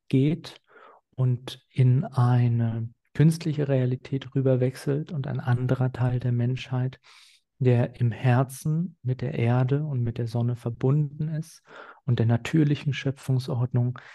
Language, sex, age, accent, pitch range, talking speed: German, male, 40-59, German, 125-140 Hz, 125 wpm